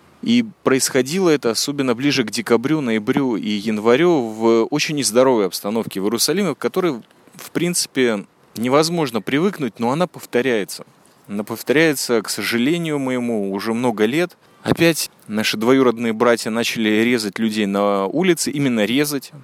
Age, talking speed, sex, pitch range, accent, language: 20-39, 135 wpm, male, 110-150 Hz, native, Russian